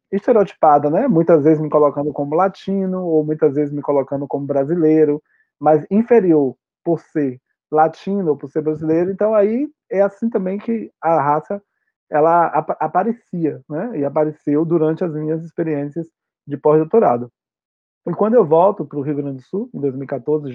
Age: 20-39